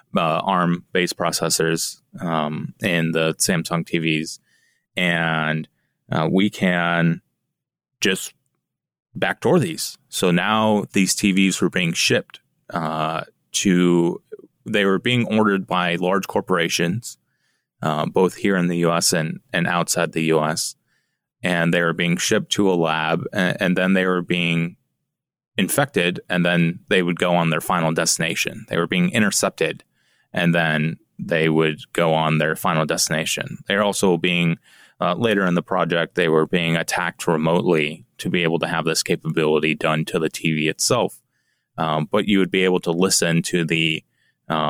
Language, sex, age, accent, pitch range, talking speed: English, male, 20-39, American, 80-100 Hz, 155 wpm